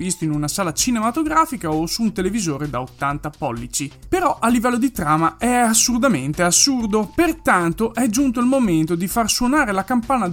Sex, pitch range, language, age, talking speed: male, 180-255 Hz, Italian, 20-39, 175 wpm